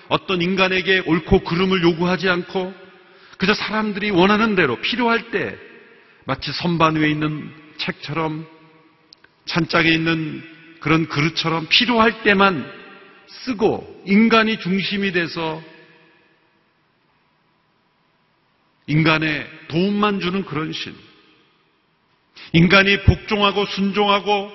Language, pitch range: Korean, 160-195 Hz